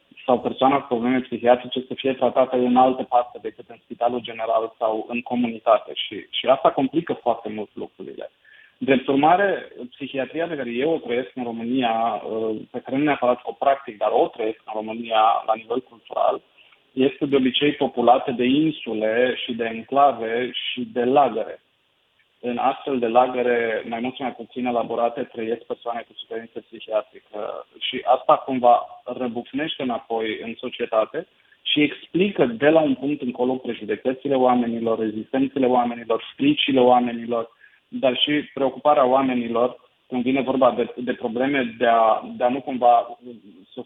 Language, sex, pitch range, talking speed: Romanian, male, 115-130 Hz, 155 wpm